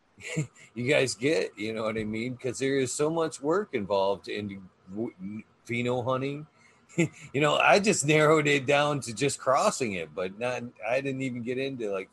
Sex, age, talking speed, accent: male, 30-49, 185 wpm, American